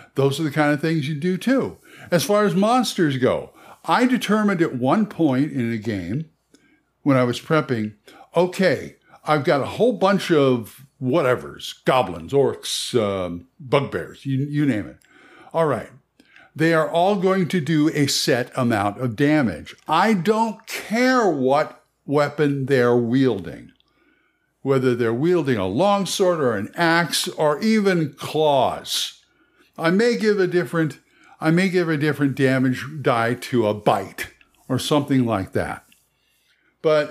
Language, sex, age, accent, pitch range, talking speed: English, male, 60-79, American, 130-180 Hz, 150 wpm